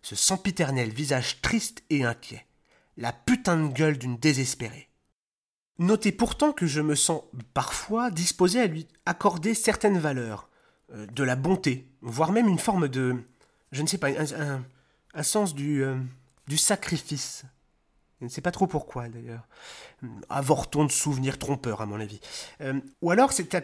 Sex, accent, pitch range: male, French, 135-190 Hz